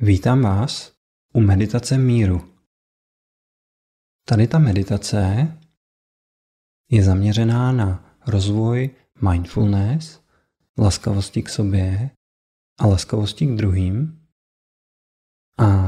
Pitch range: 100-125 Hz